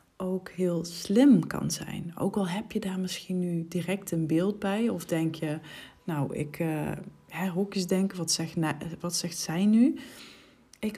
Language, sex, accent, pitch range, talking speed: Dutch, female, Dutch, 165-195 Hz, 170 wpm